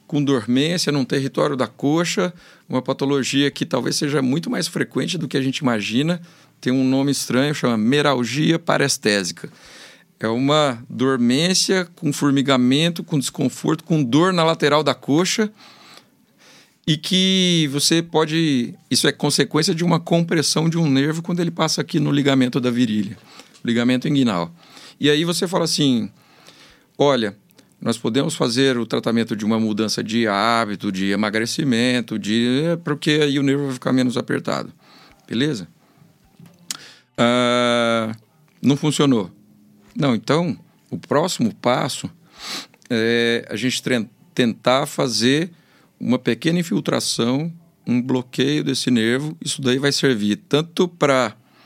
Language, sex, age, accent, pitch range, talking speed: Portuguese, male, 50-69, Brazilian, 125-160 Hz, 135 wpm